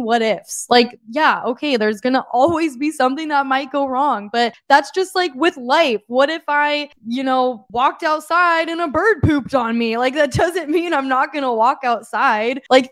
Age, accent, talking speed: 10-29, American, 200 wpm